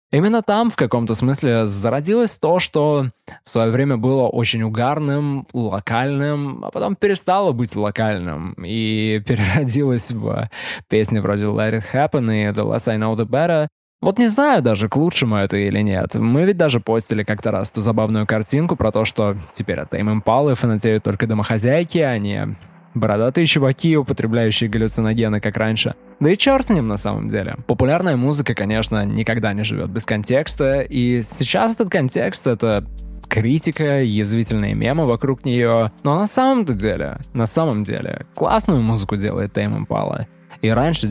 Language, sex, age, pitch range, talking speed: Russian, male, 20-39, 110-145 Hz, 165 wpm